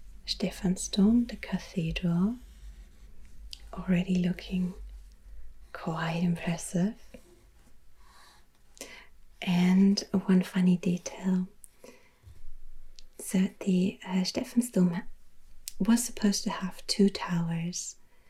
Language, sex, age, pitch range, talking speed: English, female, 30-49, 180-210 Hz, 70 wpm